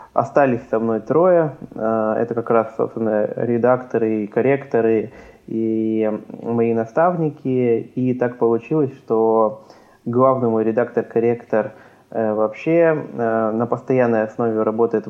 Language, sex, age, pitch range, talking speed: Russian, male, 20-39, 110-130 Hz, 105 wpm